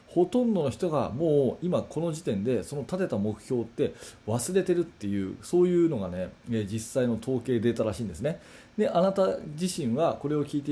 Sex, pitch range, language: male, 115-165 Hz, Japanese